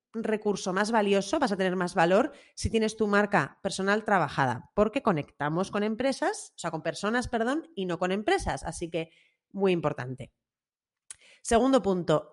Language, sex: Spanish, female